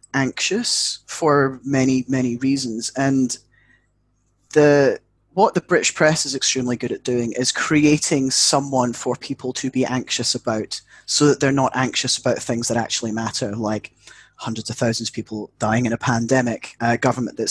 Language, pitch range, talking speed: English, 125-155 Hz, 165 wpm